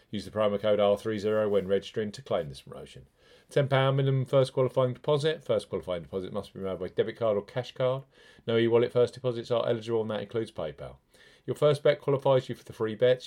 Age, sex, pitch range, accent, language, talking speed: 40-59, male, 100-130 Hz, British, English, 215 wpm